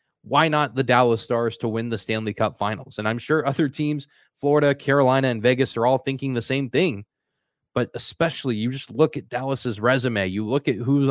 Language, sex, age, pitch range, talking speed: English, male, 20-39, 120-150 Hz, 205 wpm